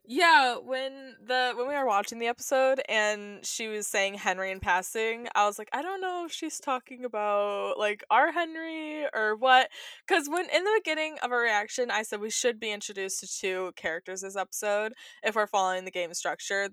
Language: English